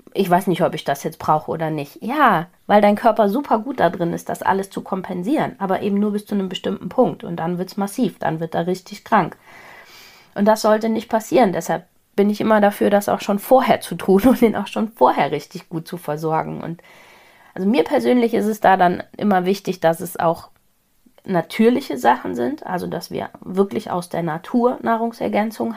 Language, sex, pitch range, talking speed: German, female, 175-230 Hz, 210 wpm